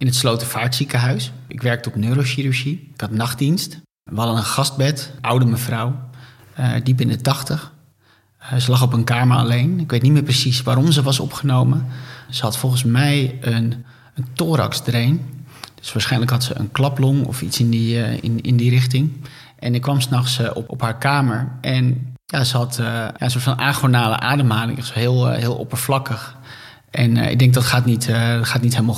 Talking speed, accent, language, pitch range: 195 wpm, Dutch, Dutch, 120-130 Hz